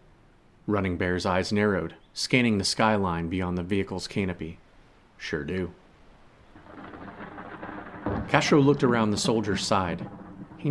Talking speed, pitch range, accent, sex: 110 wpm, 90-110 Hz, American, male